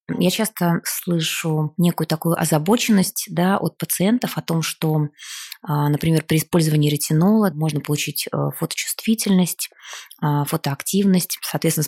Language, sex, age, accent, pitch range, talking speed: Russian, female, 20-39, native, 155-190 Hz, 100 wpm